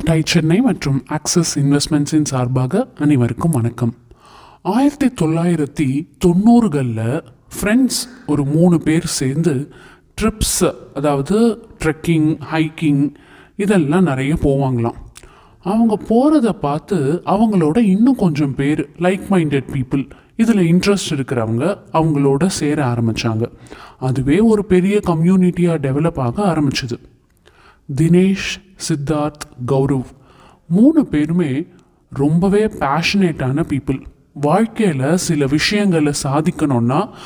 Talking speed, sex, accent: 95 wpm, male, native